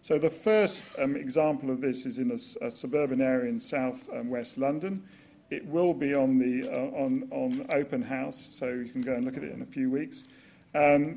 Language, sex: English, male